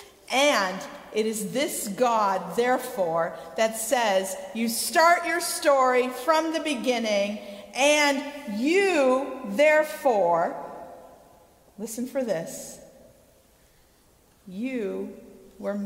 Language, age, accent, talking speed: English, 50-69, American, 85 wpm